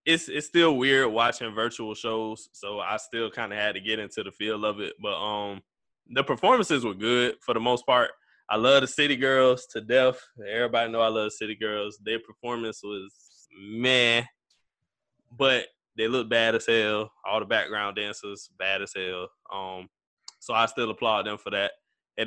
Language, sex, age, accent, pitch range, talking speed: English, male, 20-39, American, 110-130 Hz, 185 wpm